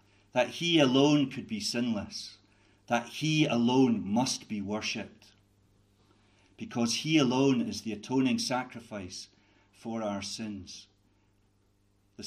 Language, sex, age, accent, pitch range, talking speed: English, male, 50-69, British, 100-140 Hz, 110 wpm